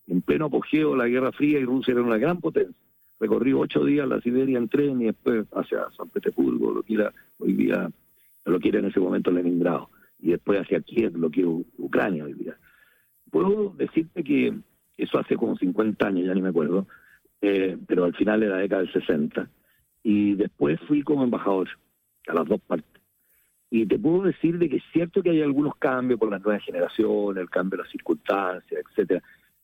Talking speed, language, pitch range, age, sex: 200 wpm, Spanish, 100-165 Hz, 50-69, male